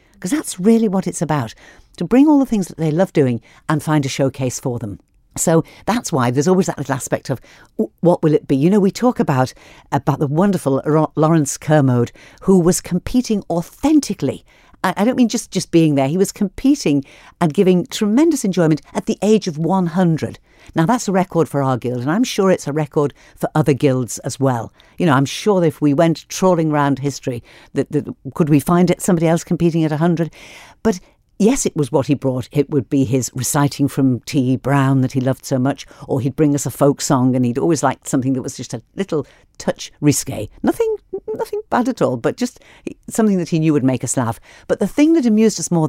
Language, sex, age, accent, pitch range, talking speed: English, female, 50-69, British, 140-185 Hz, 215 wpm